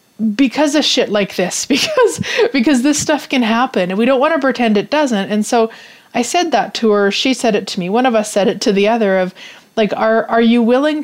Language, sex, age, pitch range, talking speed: English, female, 30-49, 205-250 Hz, 245 wpm